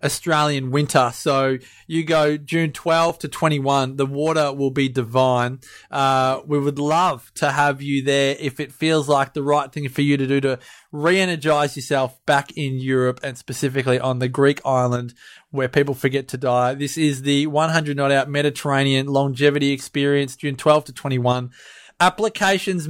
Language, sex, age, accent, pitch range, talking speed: English, male, 20-39, Australian, 135-160 Hz, 170 wpm